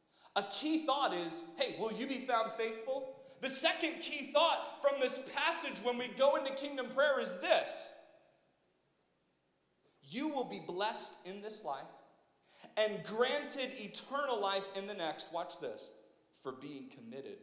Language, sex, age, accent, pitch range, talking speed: English, male, 40-59, American, 225-320 Hz, 150 wpm